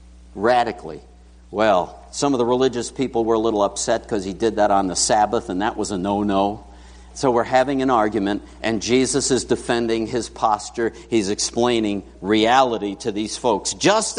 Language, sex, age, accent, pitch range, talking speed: English, male, 60-79, American, 90-140 Hz, 175 wpm